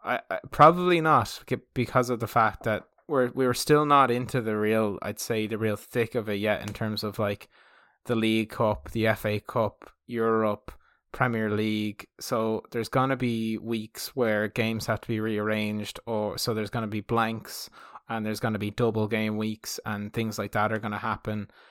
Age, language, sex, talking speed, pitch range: 20-39, English, male, 200 wpm, 105-115 Hz